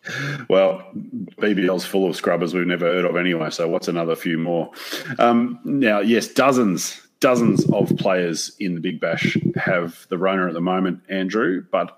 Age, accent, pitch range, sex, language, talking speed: 30-49, Australian, 85-100 Hz, male, English, 170 wpm